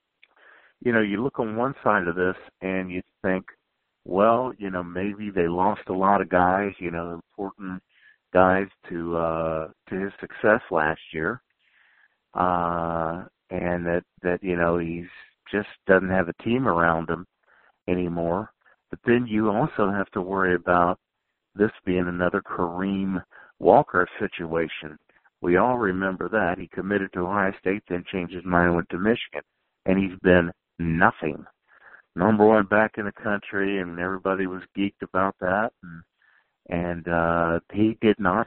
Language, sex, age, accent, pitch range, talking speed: English, male, 50-69, American, 85-100 Hz, 155 wpm